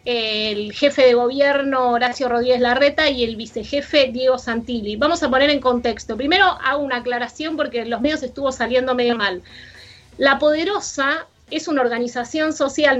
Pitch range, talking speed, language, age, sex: 235-280 Hz, 155 wpm, Spanish, 20-39, female